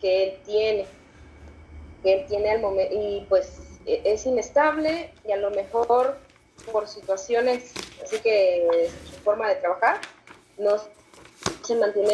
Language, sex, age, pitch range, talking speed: Spanish, female, 20-39, 195-245 Hz, 135 wpm